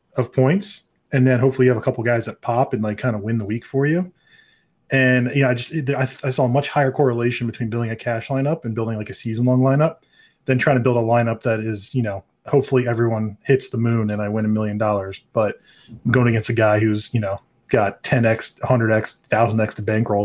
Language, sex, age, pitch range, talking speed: English, male, 20-39, 110-130 Hz, 250 wpm